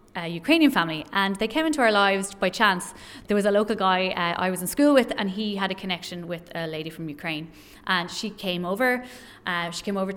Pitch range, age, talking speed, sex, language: 175-220 Hz, 20-39, 235 wpm, female, English